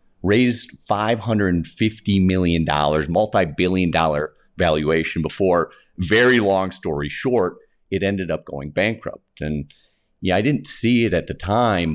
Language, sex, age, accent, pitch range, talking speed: English, male, 40-59, American, 85-105 Hz, 125 wpm